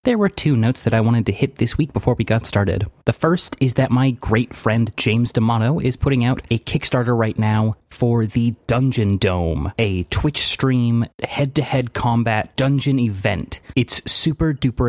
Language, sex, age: English, male, 20-39